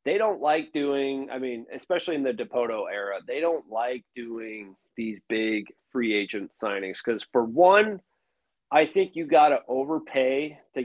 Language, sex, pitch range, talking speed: English, male, 110-165 Hz, 165 wpm